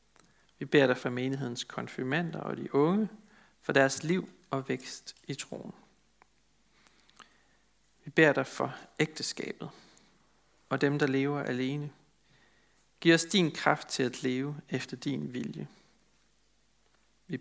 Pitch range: 130-160 Hz